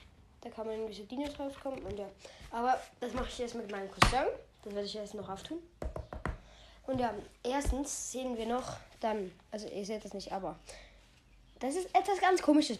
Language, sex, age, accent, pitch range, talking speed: English, female, 20-39, German, 210-275 Hz, 190 wpm